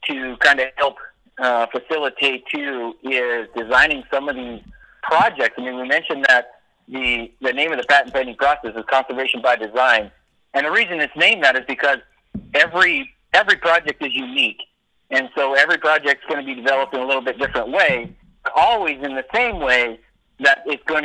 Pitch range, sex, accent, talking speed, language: 125-145 Hz, male, American, 190 wpm, English